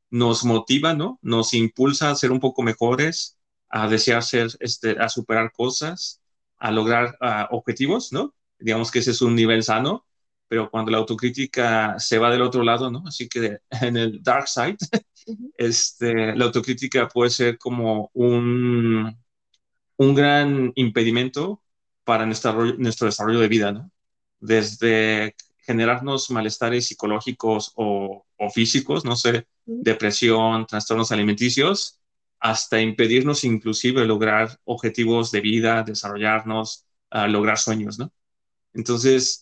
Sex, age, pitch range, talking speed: male, 30-49, 110-125 Hz, 130 wpm